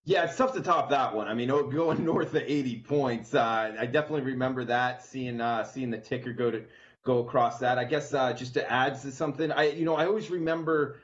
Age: 30-49